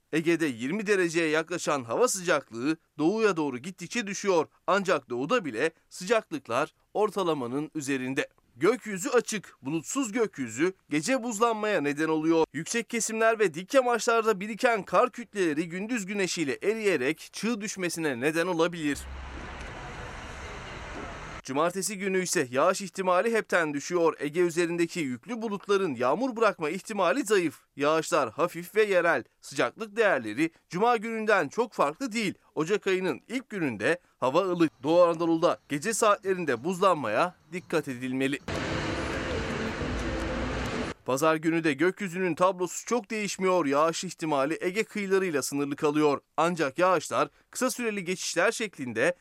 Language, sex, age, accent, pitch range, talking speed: Turkish, male, 30-49, native, 160-225 Hz, 120 wpm